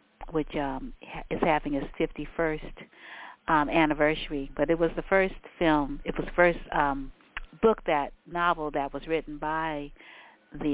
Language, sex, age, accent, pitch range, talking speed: English, female, 50-69, American, 140-175 Hz, 150 wpm